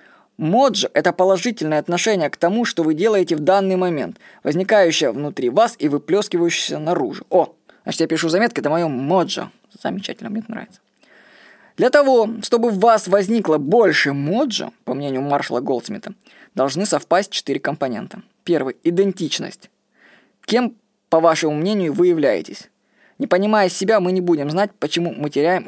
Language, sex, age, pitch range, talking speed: Russian, female, 20-39, 155-210 Hz, 155 wpm